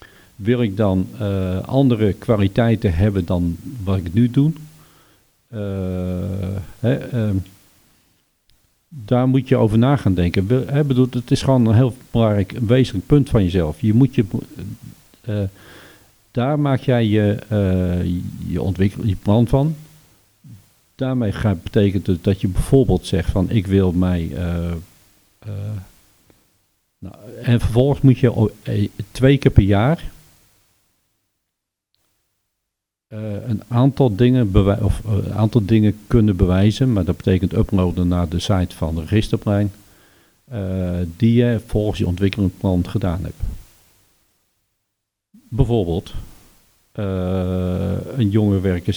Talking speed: 115 wpm